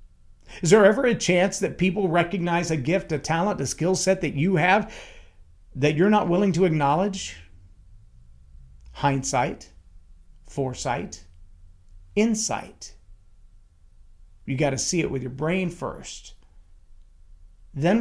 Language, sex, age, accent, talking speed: English, male, 40-59, American, 125 wpm